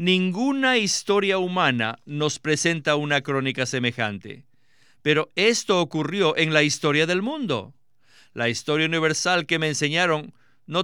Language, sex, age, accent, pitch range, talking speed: Spanish, male, 50-69, Mexican, 135-195 Hz, 125 wpm